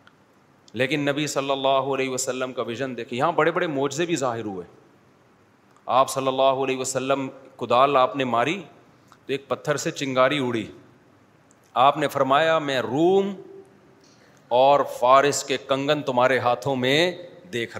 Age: 40-59